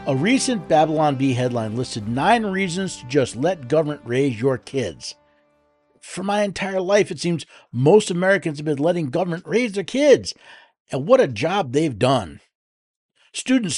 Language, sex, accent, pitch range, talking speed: English, male, American, 130-185 Hz, 160 wpm